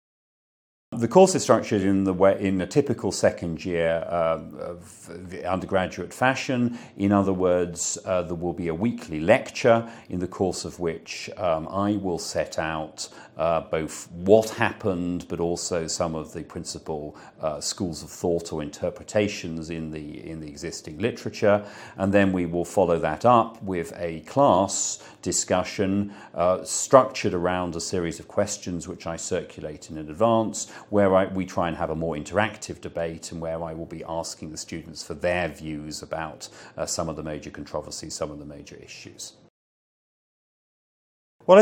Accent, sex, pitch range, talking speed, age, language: British, male, 80-100 Hz, 165 wpm, 40-59, English